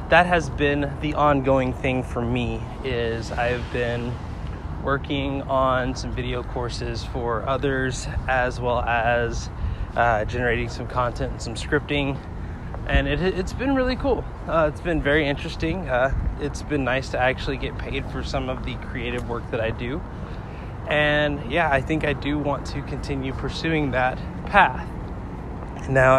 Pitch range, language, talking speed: 120-150 Hz, English, 160 wpm